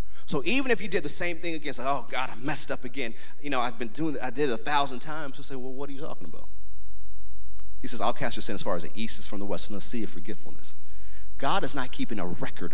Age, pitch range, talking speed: 30-49, 85-120 Hz, 295 wpm